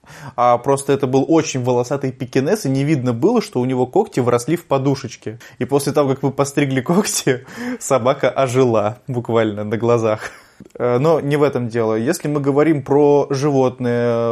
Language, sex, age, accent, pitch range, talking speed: Russian, male, 20-39, native, 120-145 Hz, 170 wpm